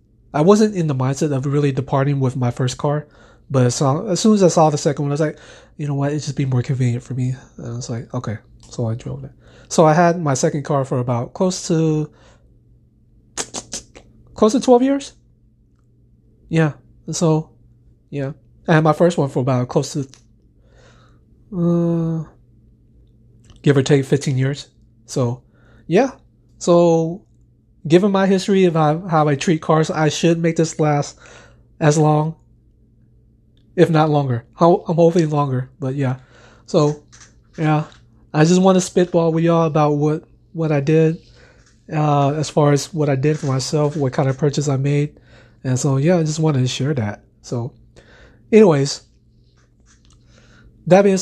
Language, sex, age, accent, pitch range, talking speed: English, male, 20-39, American, 120-160 Hz, 170 wpm